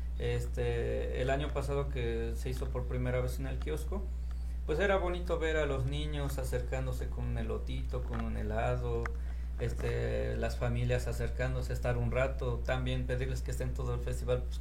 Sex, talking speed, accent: male, 175 wpm, Mexican